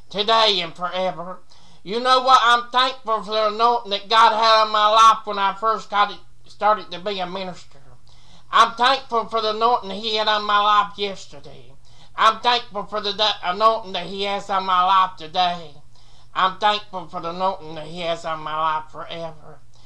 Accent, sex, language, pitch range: American, male, English, 155-215 Hz